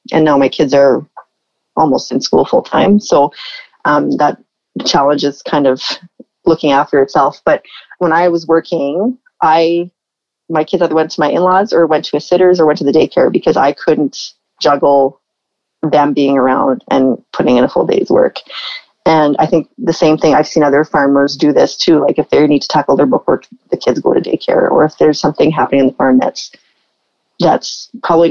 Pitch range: 145-200 Hz